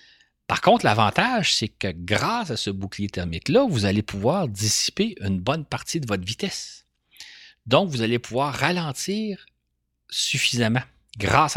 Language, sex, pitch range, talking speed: French, male, 100-145 Hz, 140 wpm